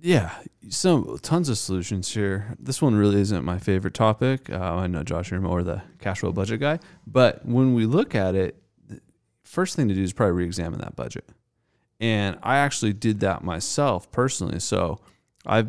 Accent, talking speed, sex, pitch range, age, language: American, 185 wpm, male, 90-115 Hz, 30-49, English